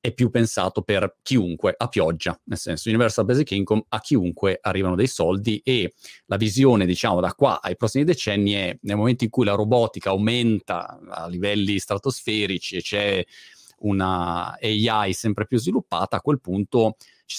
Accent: native